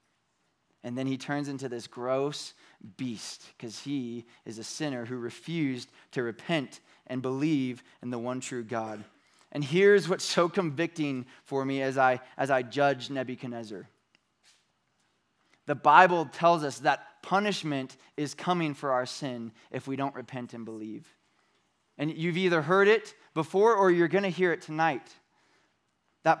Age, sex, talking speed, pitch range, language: 20-39, male, 150 wpm, 135-180 Hz, English